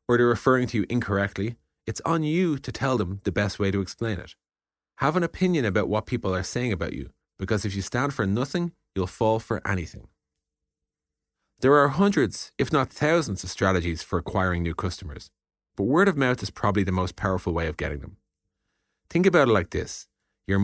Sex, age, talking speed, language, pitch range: male, 30-49, 200 wpm, English, 90-115 Hz